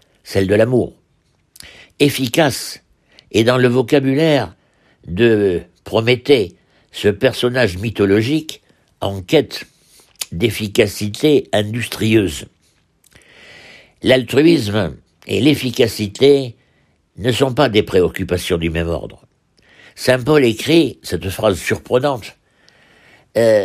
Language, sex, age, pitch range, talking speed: French, male, 60-79, 90-130 Hz, 90 wpm